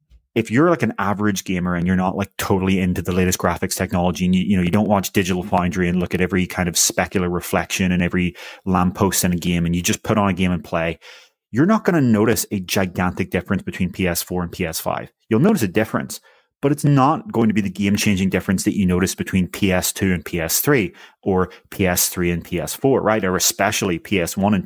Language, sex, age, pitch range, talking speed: English, male, 30-49, 90-105 Hz, 215 wpm